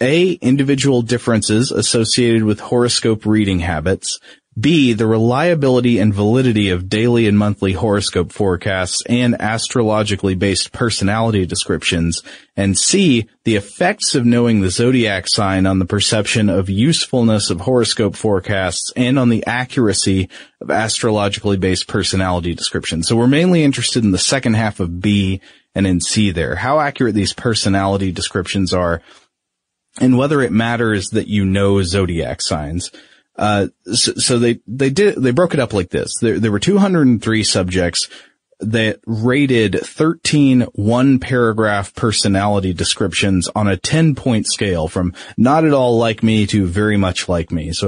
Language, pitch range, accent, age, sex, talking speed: English, 95-120 Hz, American, 30-49, male, 150 wpm